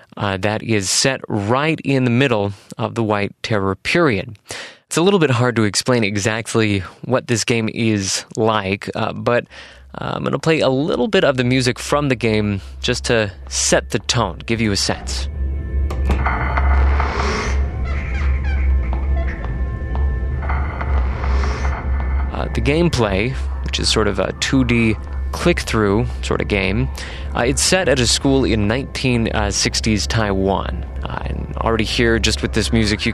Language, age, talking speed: English, 20-39, 150 wpm